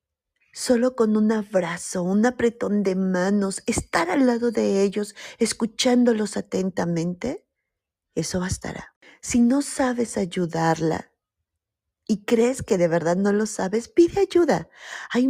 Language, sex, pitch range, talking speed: Spanish, female, 180-235 Hz, 125 wpm